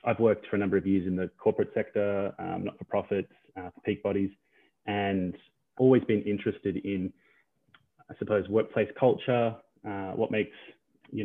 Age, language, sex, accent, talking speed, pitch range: 20-39, English, male, Australian, 155 wpm, 95-110 Hz